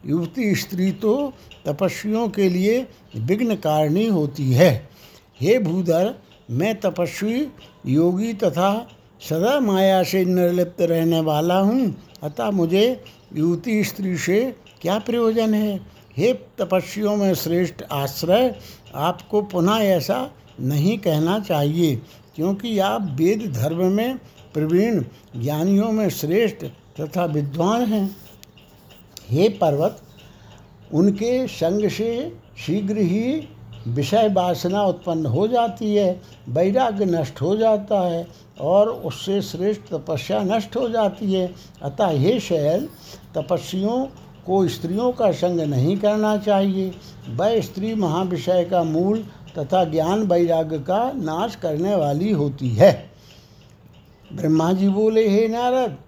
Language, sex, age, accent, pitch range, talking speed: Hindi, male, 60-79, native, 160-210 Hz, 115 wpm